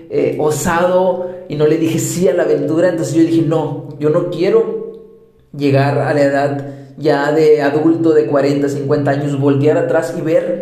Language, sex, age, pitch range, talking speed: Spanish, male, 30-49, 145-170 Hz, 180 wpm